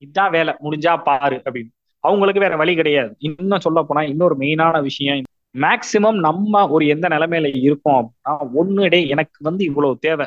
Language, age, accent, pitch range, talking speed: Tamil, 20-39, native, 145-190 Hz, 150 wpm